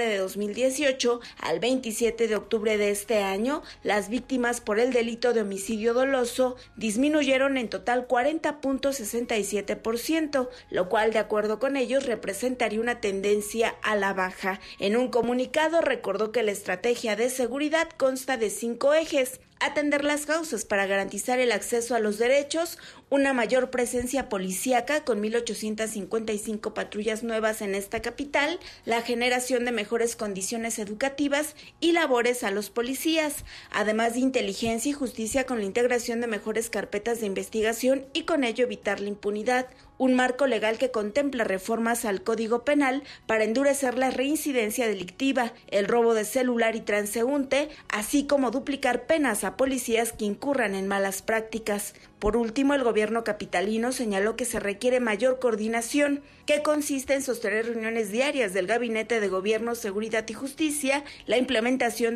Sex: female